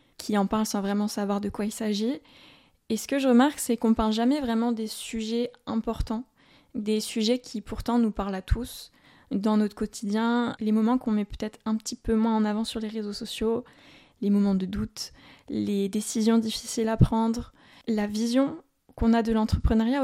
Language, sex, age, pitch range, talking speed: French, female, 20-39, 215-245 Hz, 190 wpm